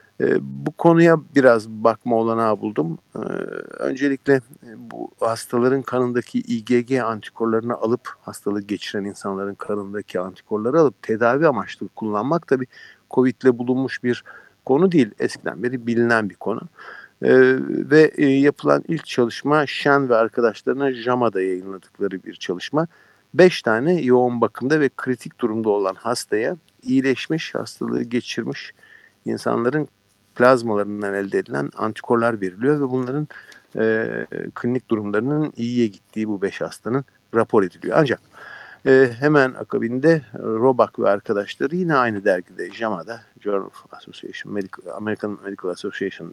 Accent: native